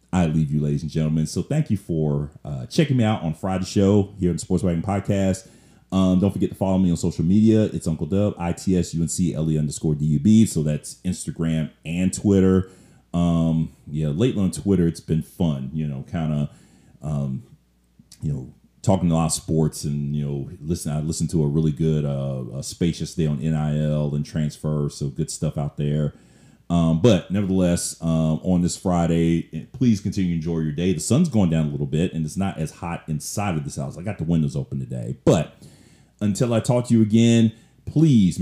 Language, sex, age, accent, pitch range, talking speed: English, male, 40-59, American, 80-100 Hz, 200 wpm